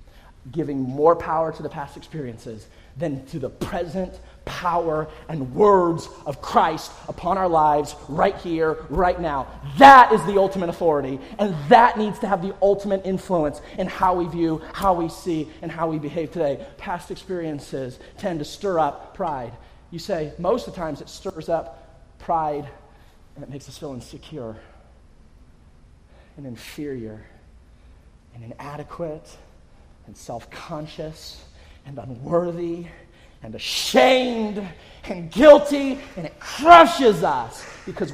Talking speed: 140 wpm